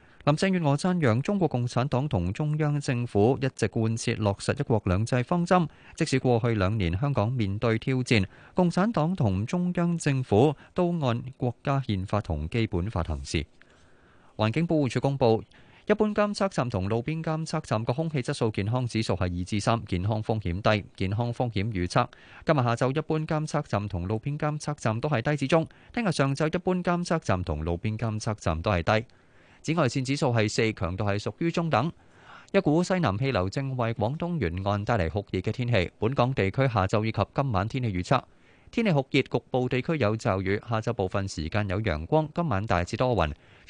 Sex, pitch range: male, 100-150 Hz